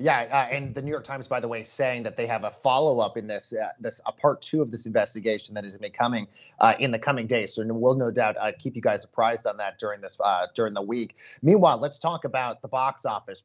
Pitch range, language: 115-145 Hz, English